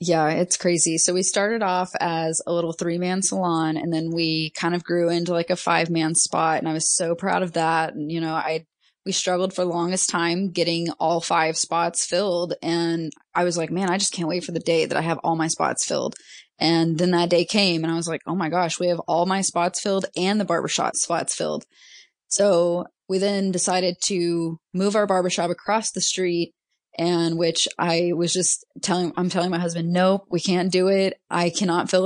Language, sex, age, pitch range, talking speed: English, female, 20-39, 170-190 Hz, 220 wpm